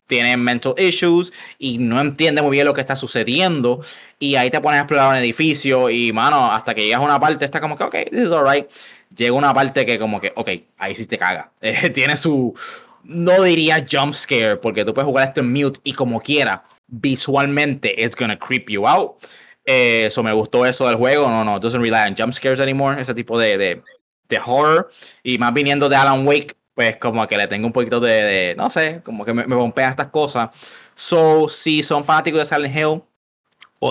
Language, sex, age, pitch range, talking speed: Spanish, male, 20-39, 120-150 Hz, 220 wpm